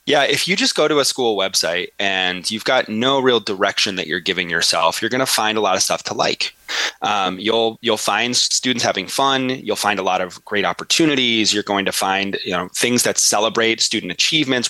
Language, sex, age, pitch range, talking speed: English, male, 20-39, 105-130 Hz, 220 wpm